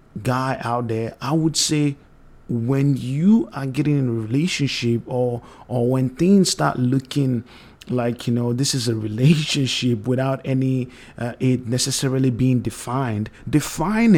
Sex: male